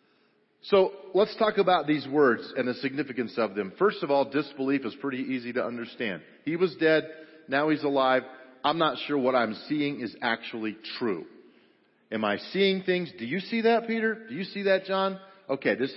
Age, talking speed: 40-59, 190 wpm